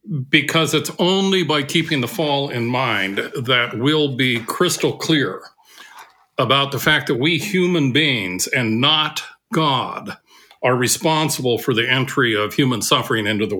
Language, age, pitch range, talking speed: English, 50-69, 130-165 Hz, 150 wpm